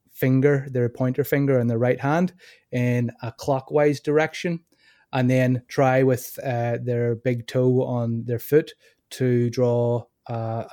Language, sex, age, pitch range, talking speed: English, male, 20-39, 120-145 Hz, 145 wpm